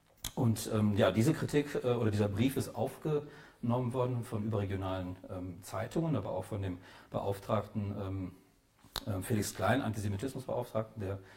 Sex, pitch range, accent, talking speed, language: male, 105-130 Hz, German, 135 wpm, German